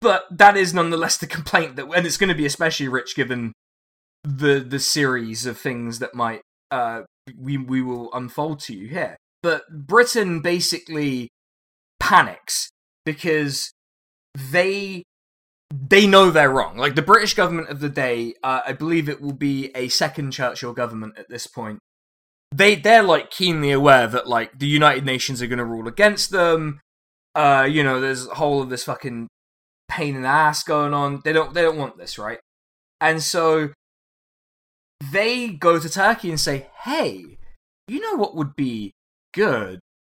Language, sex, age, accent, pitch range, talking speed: English, male, 20-39, British, 125-175 Hz, 170 wpm